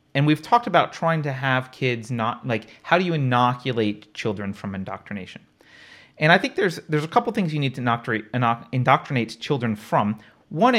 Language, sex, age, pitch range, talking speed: English, male, 30-49, 110-155 Hz, 185 wpm